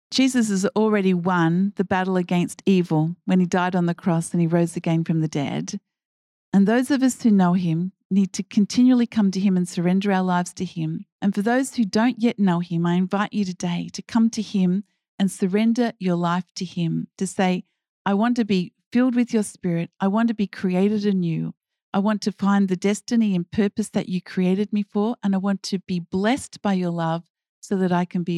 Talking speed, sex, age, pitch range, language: 220 wpm, female, 50-69, 180-215 Hz, English